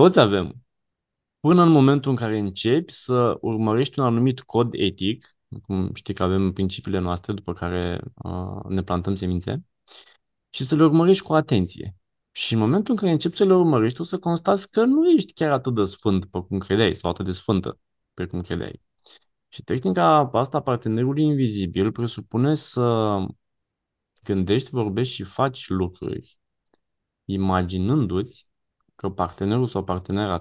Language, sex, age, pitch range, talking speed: Romanian, male, 20-39, 95-125 Hz, 155 wpm